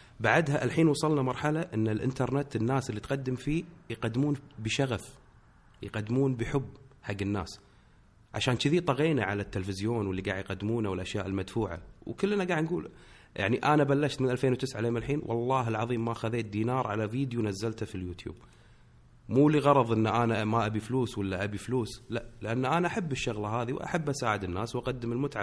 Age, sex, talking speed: 30-49, male, 160 wpm